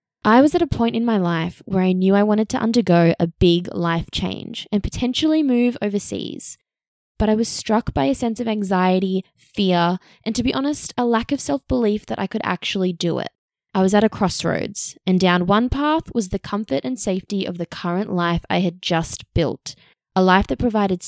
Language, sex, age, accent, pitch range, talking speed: English, female, 20-39, Australian, 180-225 Hz, 210 wpm